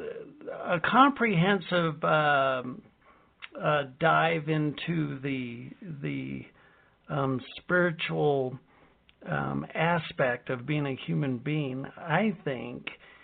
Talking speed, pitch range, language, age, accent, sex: 85 wpm, 140-170 Hz, English, 60-79, American, male